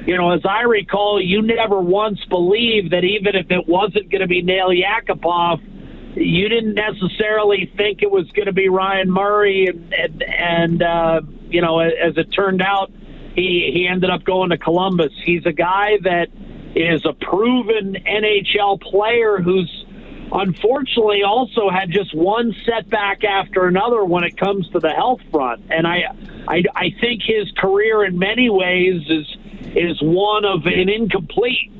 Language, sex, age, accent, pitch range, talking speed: English, male, 50-69, American, 180-210 Hz, 165 wpm